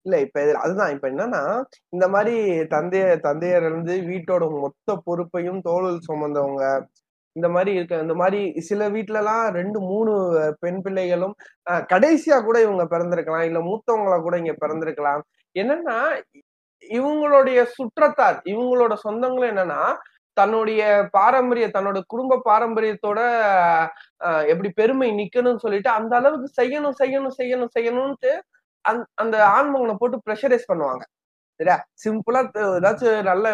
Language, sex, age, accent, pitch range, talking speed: Tamil, male, 20-39, native, 175-225 Hz, 115 wpm